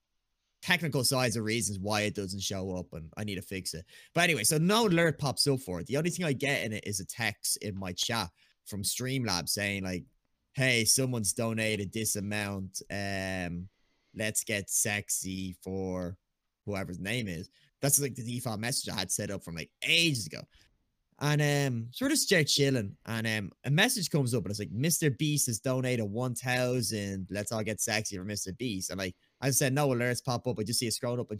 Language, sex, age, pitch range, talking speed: English, male, 20-39, 100-140 Hz, 210 wpm